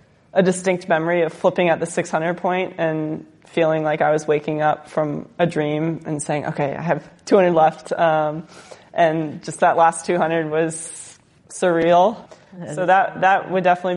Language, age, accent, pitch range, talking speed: English, 20-39, American, 165-190 Hz, 170 wpm